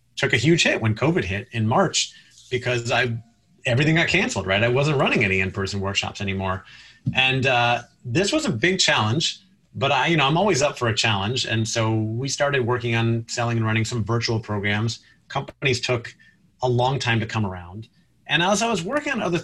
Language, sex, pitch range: English, male, 110-130 Hz